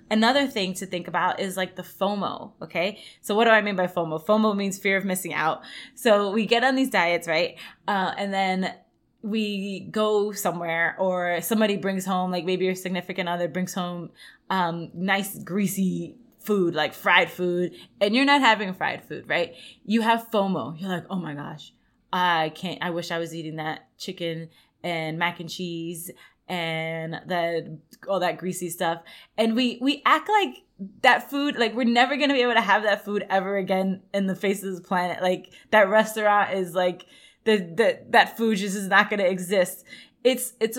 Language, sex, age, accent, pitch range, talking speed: English, female, 20-39, American, 180-225 Hz, 190 wpm